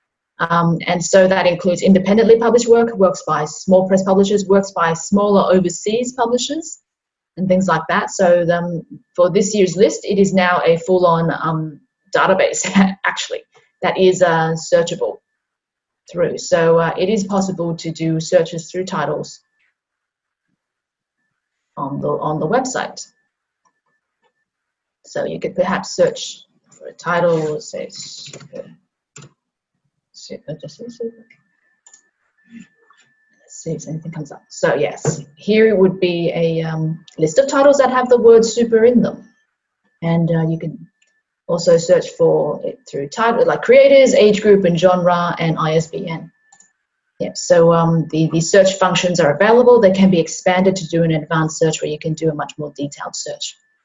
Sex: female